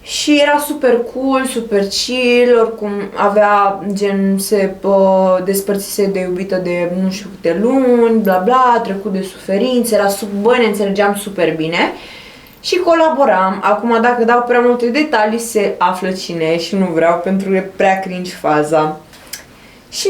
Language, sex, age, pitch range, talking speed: Romanian, female, 20-39, 180-235 Hz, 150 wpm